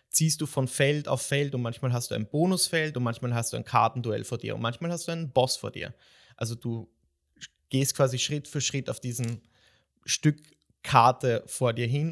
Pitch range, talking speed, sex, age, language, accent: 130-155 Hz, 210 wpm, male, 20-39, German, German